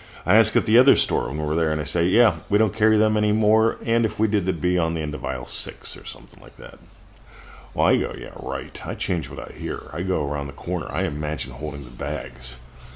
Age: 40-59